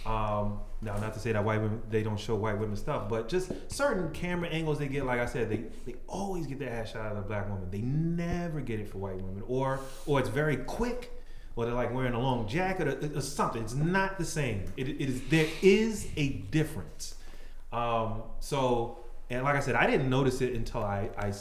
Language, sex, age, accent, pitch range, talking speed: English, male, 30-49, American, 100-130 Hz, 235 wpm